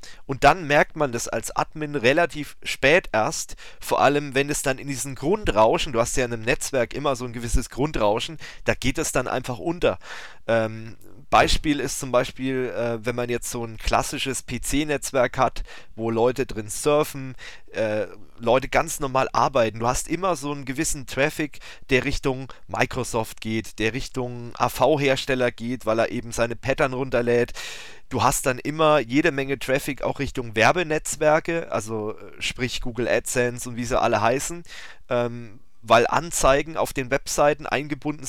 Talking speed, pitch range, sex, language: 165 wpm, 120-150 Hz, male, German